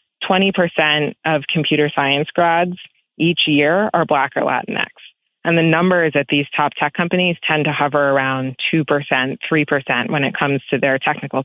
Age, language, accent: 20-39, English, American